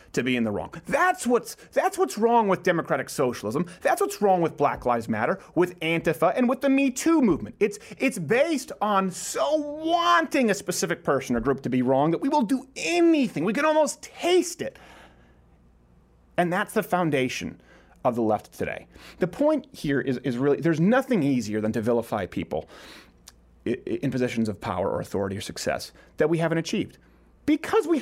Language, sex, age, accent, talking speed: English, male, 30-49, American, 185 wpm